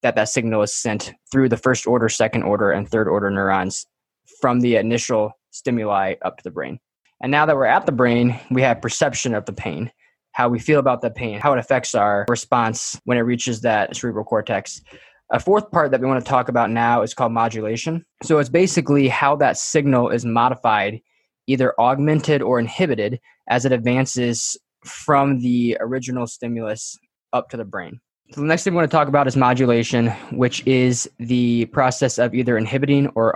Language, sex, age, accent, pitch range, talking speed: English, male, 20-39, American, 115-135 Hz, 195 wpm